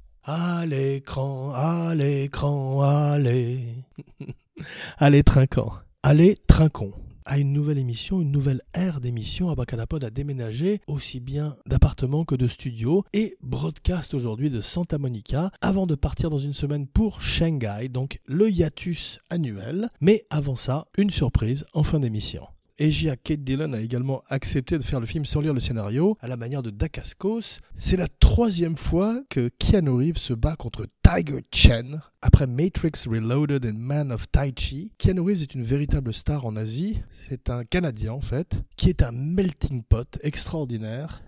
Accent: French